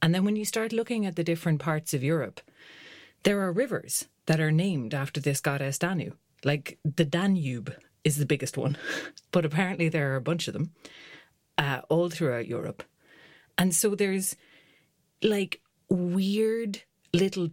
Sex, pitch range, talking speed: female, 145-175 Hz, 160 wpm